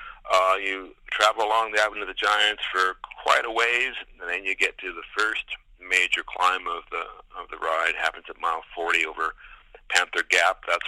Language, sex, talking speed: English, male, 195 wpm